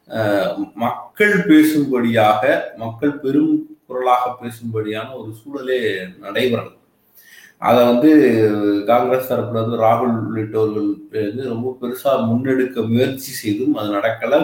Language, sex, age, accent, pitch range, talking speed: Tamil, male, 30-49, native, 110-145 Hz, 95 wpm